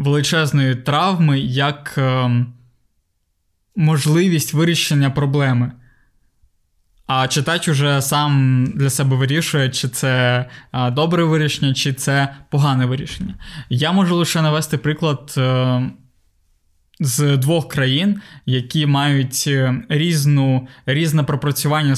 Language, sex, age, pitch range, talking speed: Ukrainian, male, 20-39, 130-155 Hz, 95 wpm